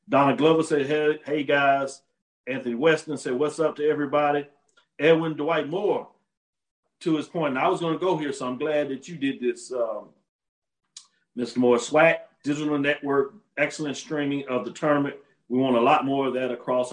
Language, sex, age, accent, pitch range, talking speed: English, male, 40-59, American, 135-165 Hz, 185 wpm